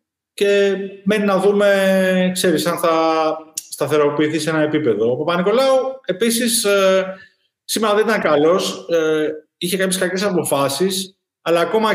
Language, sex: Greek, male